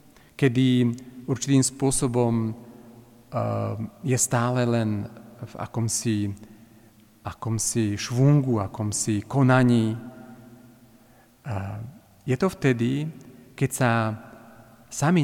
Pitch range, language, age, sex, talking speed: 115-150 Hz, Slovak, 40-59, male, 80 wpm